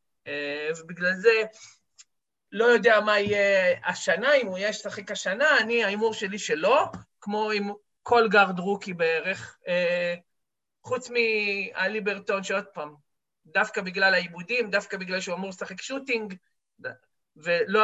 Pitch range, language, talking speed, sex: 185-245 Hz, Hebrew, 130 wpm, male